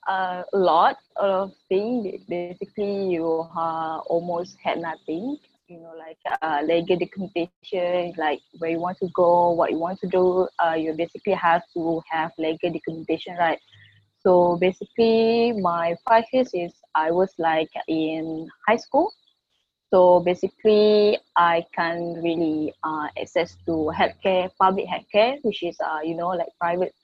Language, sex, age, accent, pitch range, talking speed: English, female, 20-39, Malaysian, 165-195 Hz, 145 wpm